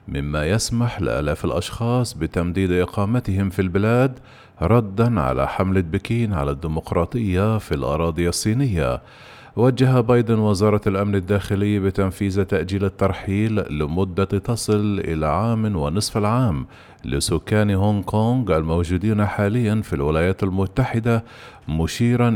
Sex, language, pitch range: male, Arabic, 90-110 Hz